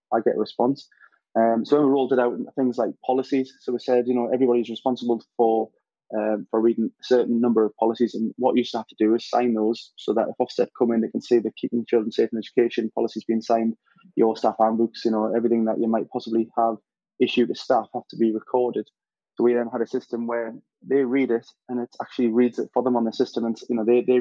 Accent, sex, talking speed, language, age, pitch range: British, male, 250 wpm, English, 20-39, 115-125 Hz